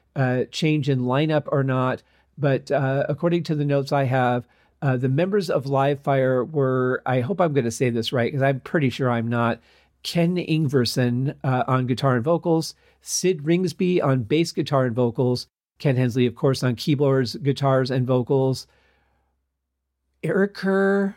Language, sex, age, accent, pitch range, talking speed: English, male, 40-59, American, 125-150 Hz, 165 wpm